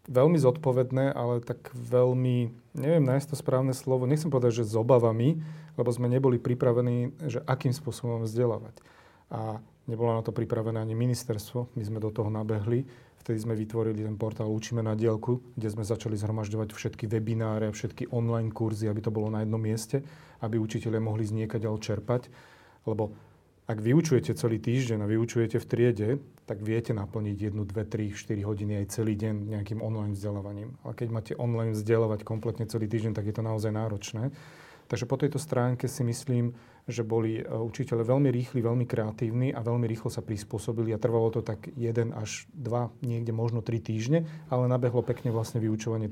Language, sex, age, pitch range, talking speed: Slovak, male, 30-49, 110-125 Hz, 175 wpm